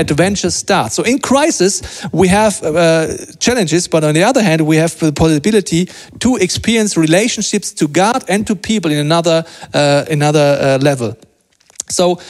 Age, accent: 40-59, German